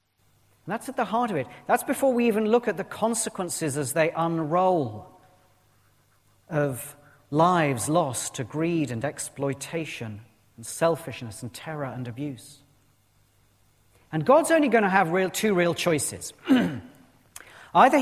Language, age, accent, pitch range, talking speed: English, 40-59, British, 110-170 Hz, 135 wpm